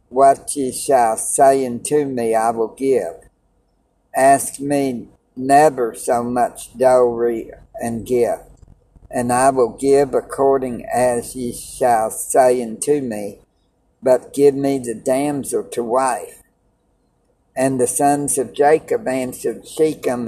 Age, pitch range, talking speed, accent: 60-79, 125-150 Hz, 125 wpm, American